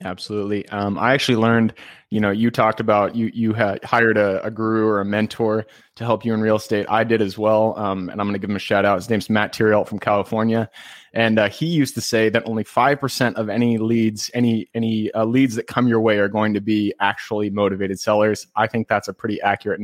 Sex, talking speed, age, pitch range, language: male, 240 wpm, 20-39, 110-120 Hz, English